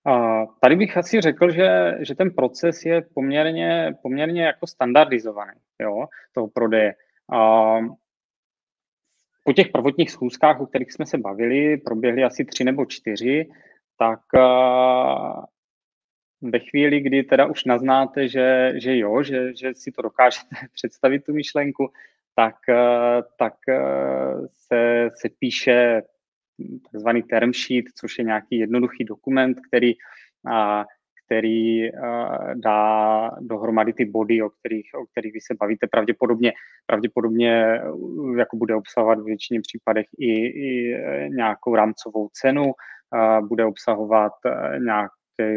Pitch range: 110-130 Hz